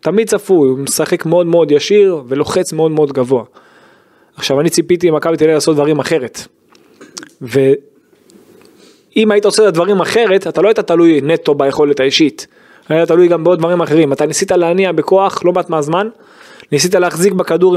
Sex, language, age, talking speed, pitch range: male, Hebrew, 20-39, 170 wpm, 150-200 Hz